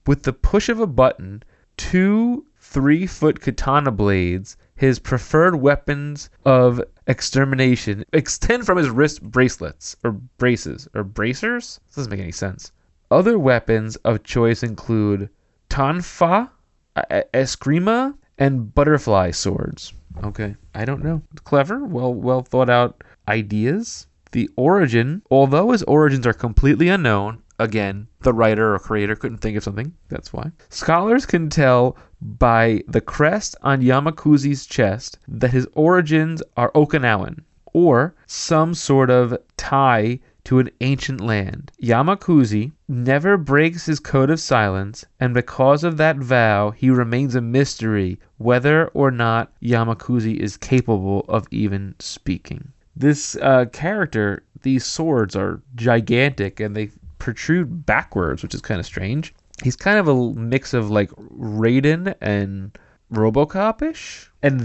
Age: 20-39